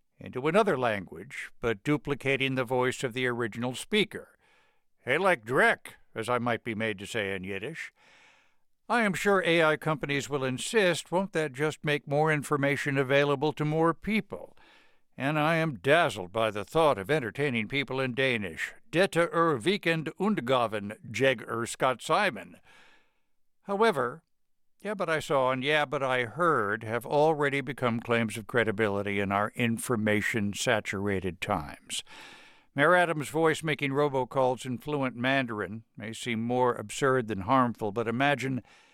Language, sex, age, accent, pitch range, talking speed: English, male, 60-79, American, 115-155 Hz, 150 wpm